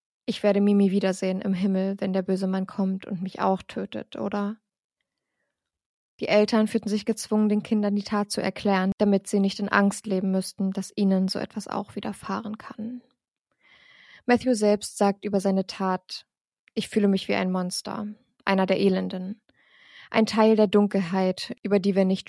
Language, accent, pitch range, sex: German, German, 190-215 Hz, female